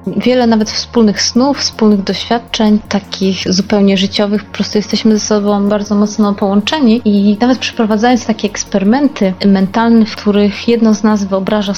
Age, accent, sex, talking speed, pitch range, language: 20-39, native, female, 150 wpm, 185-215 Hz, Polish